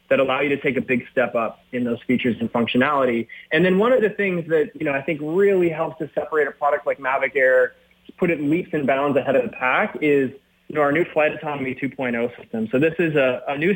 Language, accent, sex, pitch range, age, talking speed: English, American, male, 125-160 Hz, 20-39, 255 wpm